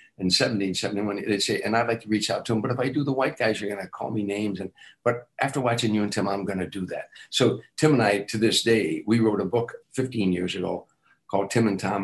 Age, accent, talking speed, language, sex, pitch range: 60-79, American, 275 wpm, English, male, 100-120 Hz